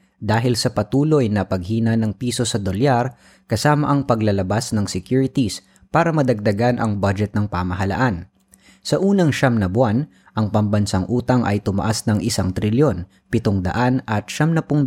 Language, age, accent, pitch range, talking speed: Filipino, 20-39, native, 100-130 Hz, 155 wpm